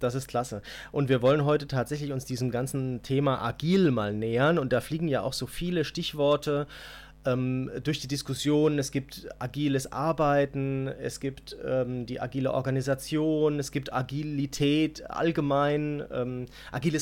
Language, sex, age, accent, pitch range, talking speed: German, male, 30-49, German, 125-150 Hz, 150 wpm